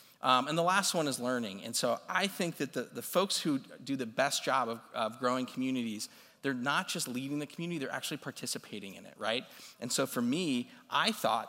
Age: 40-59